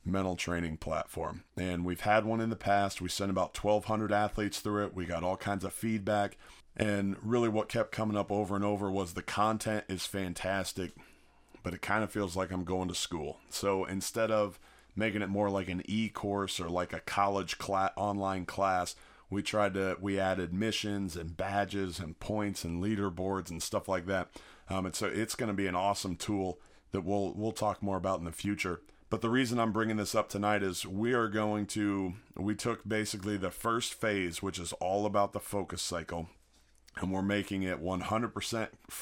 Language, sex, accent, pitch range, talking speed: English, male, American, 95-105 Hz, 200 wpm